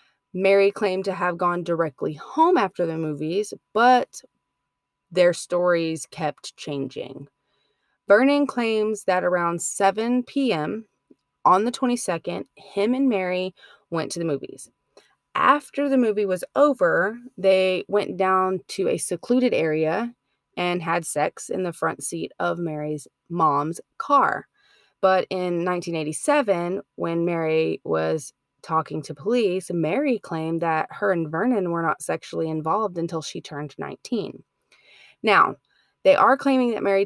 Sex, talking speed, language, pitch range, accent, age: female, 135 wpm, English, 170-235 Hz, American, 20-39